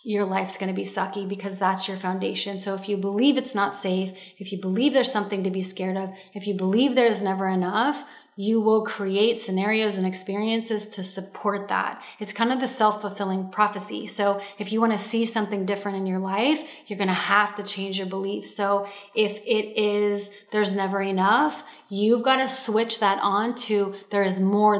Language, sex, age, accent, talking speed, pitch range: English, female, 30-49, American, 200 wpm, 190-220 Hz